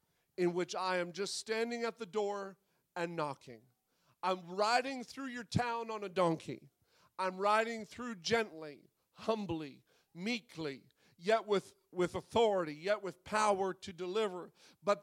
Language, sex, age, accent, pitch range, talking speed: English, male, 40-59, American, 175-230 Hz, 140 wpm